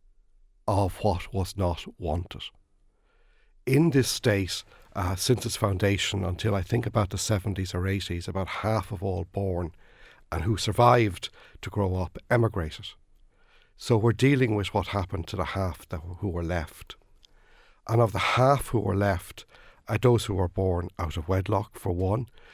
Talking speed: 170 wpm